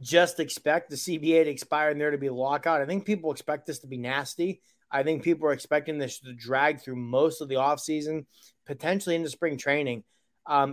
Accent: American